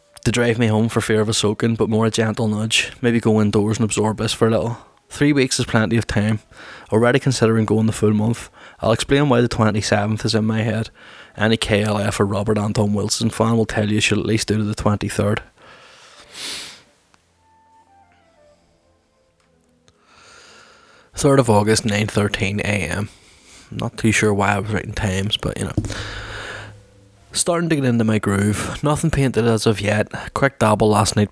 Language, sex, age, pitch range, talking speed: English, male, 20-39, 105-115 Hz, 175 wpm